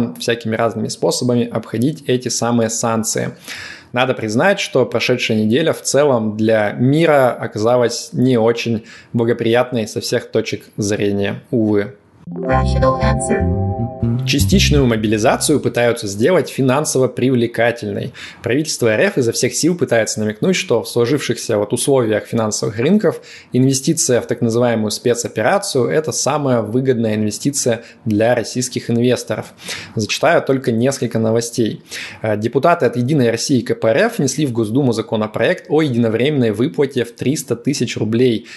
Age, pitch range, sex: 20-39, 110-130 Hz, male